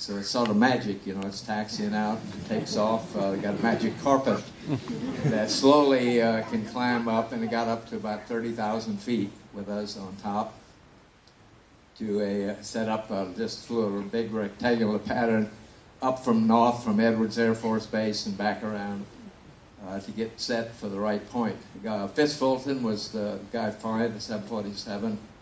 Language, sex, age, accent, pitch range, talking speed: English, male, 60-79, American, 100-115 Hz, 175 wpm